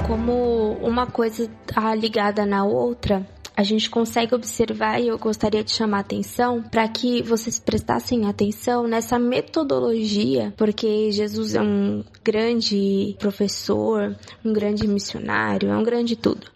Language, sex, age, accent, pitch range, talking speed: Portuguese, female, 20-39, Brazilian, 210-250 Hz, 135 wpm